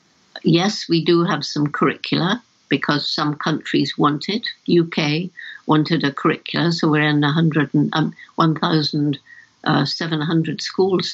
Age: 60-79